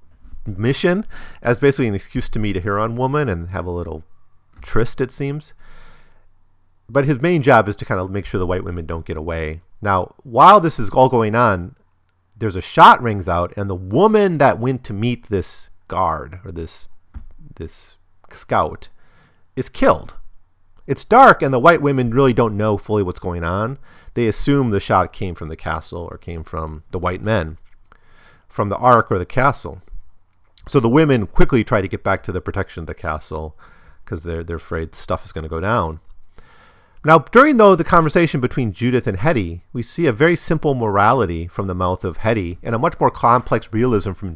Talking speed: 195 wpm